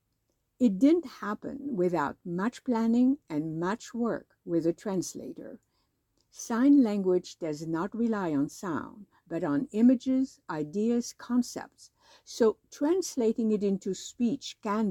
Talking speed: 120 wpm